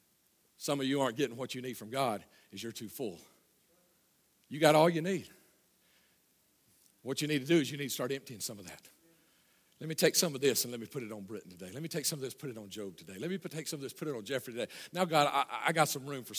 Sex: male